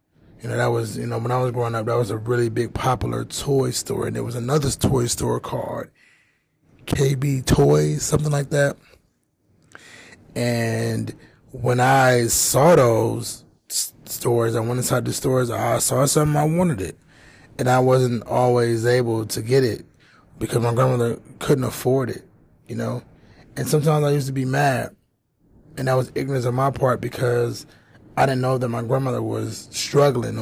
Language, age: English, 20-39